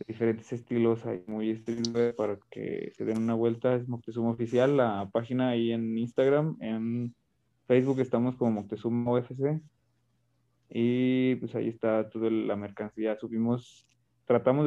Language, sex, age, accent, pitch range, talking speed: Spanish, male, 20-39, Mexican, 115-125 Hz, 140 wpm